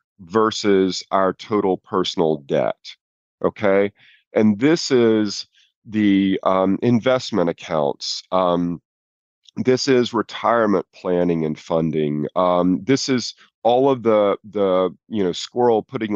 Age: 40-59